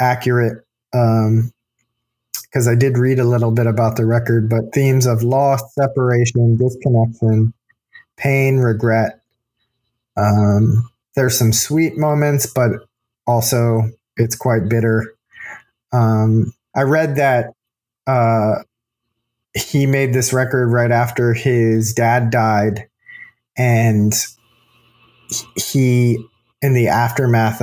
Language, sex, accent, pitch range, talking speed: English, male, American, 110-125 Hz, 105 wpm